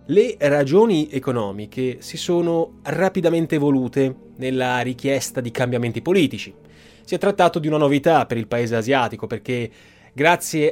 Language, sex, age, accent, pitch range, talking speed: Italian, male, 20-39, native, 120-165 Hz, 135 wpm